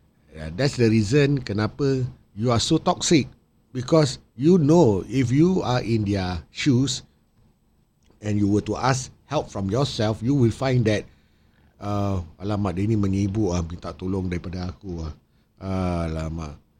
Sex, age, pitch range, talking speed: male, 50-69, 95-135 Hz, 145 wpm